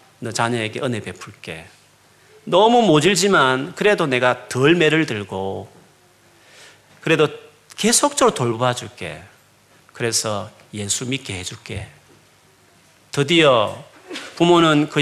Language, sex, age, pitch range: Korean, male, 40-59, 110-150 Hz